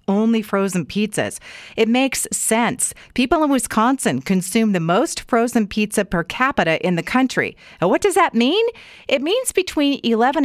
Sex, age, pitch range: female, 40-59, 185-275 Hz